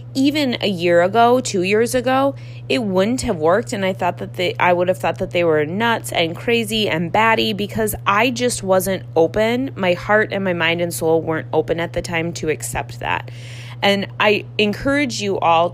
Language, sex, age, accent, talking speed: English, female, 20-39, American, 200 wpm